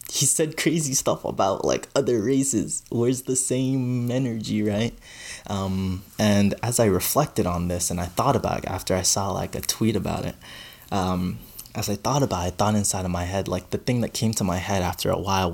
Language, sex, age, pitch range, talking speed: English, male, 20-39, 95-120 Hz, 215 wpm